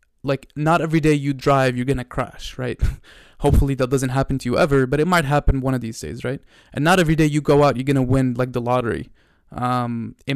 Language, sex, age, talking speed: English, male, 20-39, 240 wpm